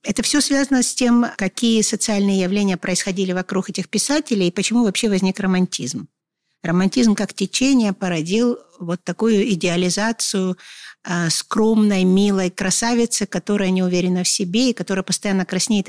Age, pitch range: 50-69, 180-220 Hz